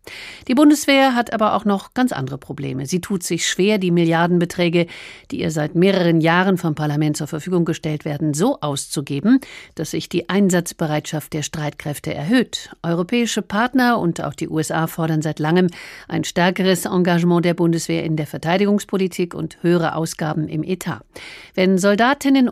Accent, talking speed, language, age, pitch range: German, 155 wpm, German, 50-69, 160-195 Hz